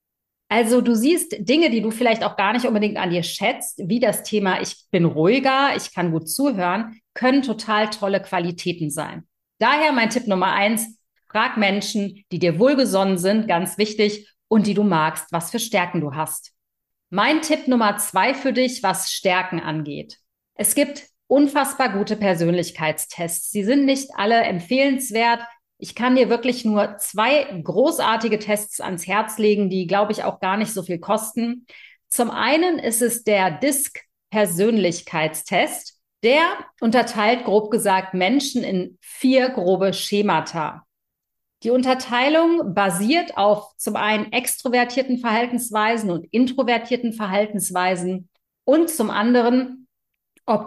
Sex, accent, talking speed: female, German, 140 wpm